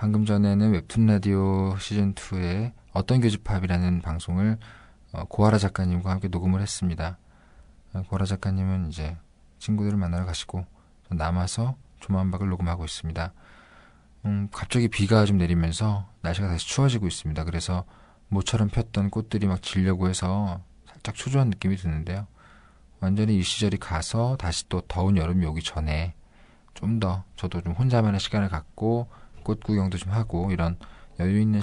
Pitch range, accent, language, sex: 85-105 Hz, native, Korean, male